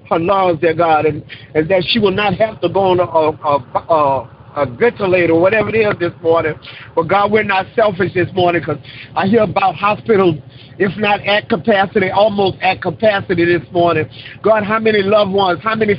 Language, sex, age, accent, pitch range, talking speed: English, male, 50-69, American, 180-235 Hz, 190 wpm